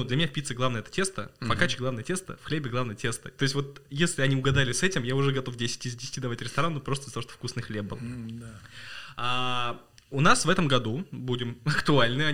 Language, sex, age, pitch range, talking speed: Russian, male, 20-39, 115-145 Hz, 220 wpm